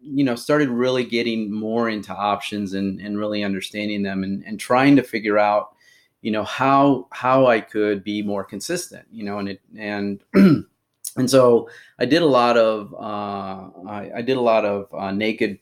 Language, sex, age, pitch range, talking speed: English, male, 30-49, 100-120 Hz, 190 wpm